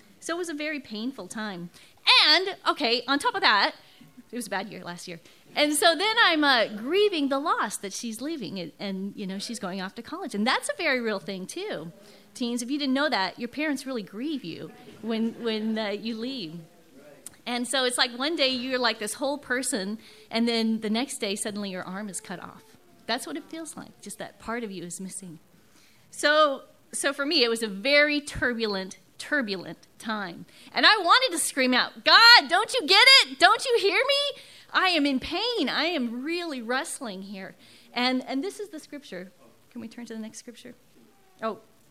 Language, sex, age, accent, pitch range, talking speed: English, female, 30-49, American, 205-295 Hz, 210 wpm